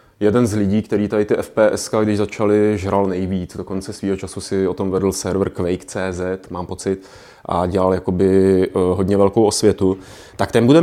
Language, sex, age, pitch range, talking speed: Czech, male, 30-49, 100-120 Hz, 175 wpm